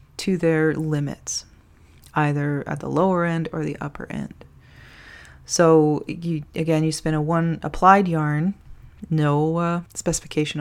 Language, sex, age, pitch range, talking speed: English, female, 30-49, 140-170 Hz, 135 wpm